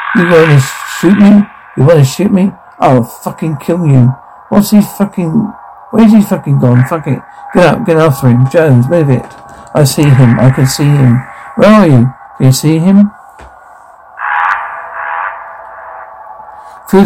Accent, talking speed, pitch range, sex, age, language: British, 155 wpm, 130-170 Hz, male, 60-79, English